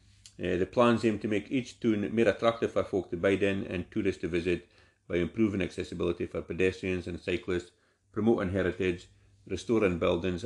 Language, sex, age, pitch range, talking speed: English, male, 50-69, 90-100 Hz, 170 wpm